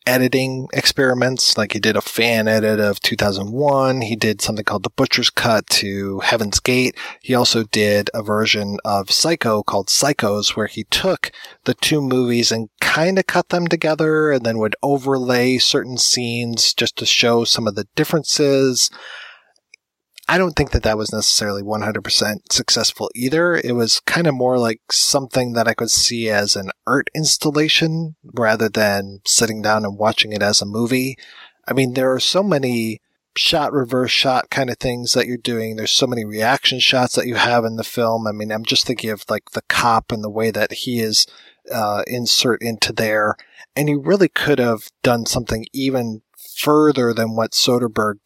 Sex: male